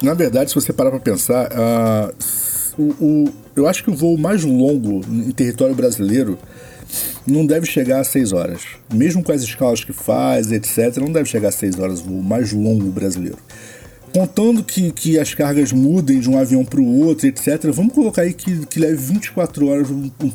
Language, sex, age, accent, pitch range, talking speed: Portuguese, male, 50-69, Brazilian, 120-185 Hz, 195 wpm